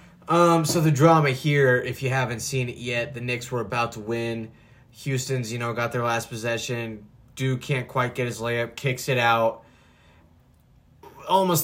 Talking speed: 175 wpm